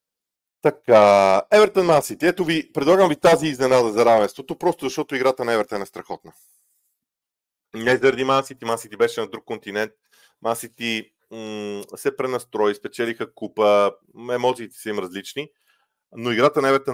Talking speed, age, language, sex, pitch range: 135 wpm, 40-59, Bulgarian, male, 105-155 Hz